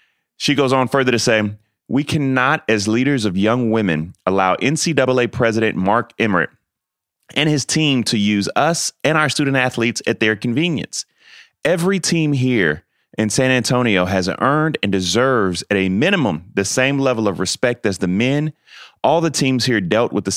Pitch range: 100-135 Hz